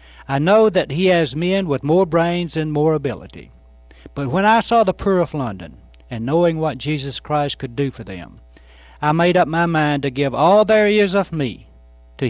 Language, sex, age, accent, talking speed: English, male, 60-79, American, 205 wpm